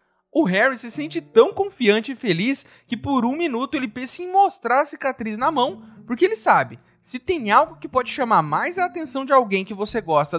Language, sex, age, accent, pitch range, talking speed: Portuguese, male, 30-49, Brazilian, 195-275 Hz, 215 wpm